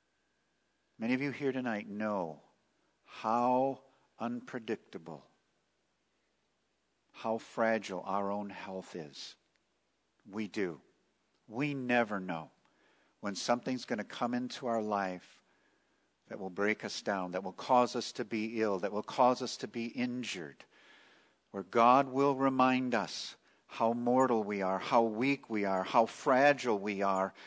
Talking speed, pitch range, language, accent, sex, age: 140 wpm, 95-125 Hz, English, American, male, 50-69